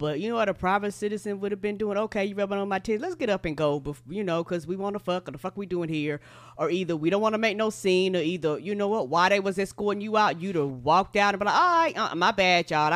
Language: English